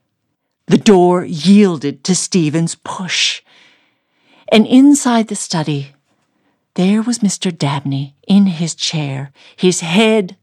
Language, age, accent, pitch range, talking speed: English, 50-69, American, 145-205 Hz, 110 wpm